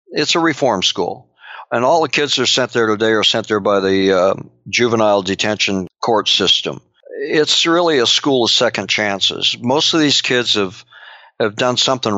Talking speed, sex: 185 wpm, male